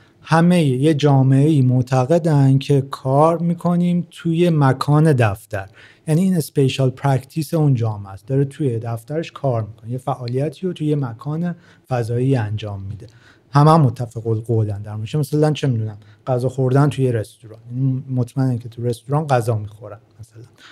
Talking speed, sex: 150 wpm, male